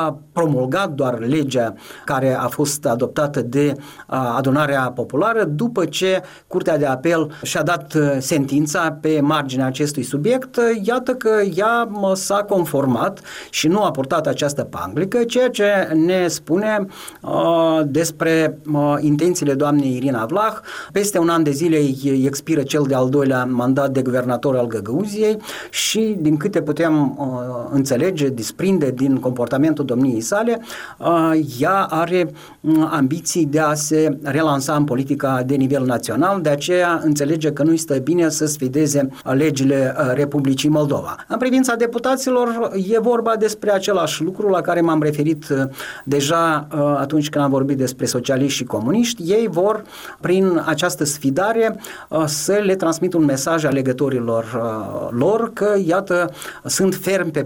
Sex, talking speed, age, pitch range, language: male, 140 wpm, 30-49, 140-185 Hz, Romanian